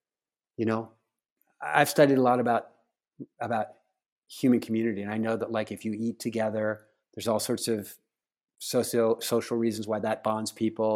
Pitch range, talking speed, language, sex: 115-150 Hz, 165 wpm, English, male